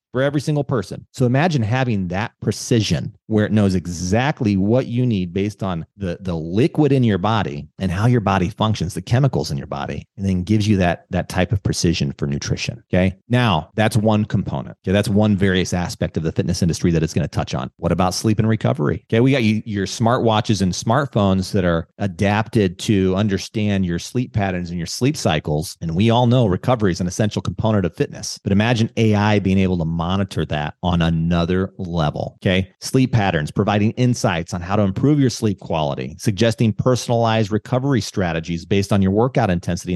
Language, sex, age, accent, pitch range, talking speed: English, male, 40-59, American, 95-120 Hz, 200 wpm